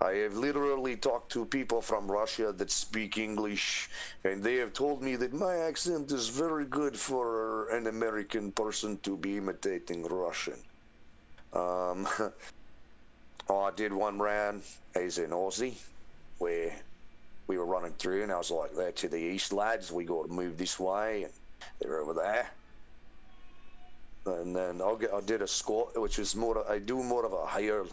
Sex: male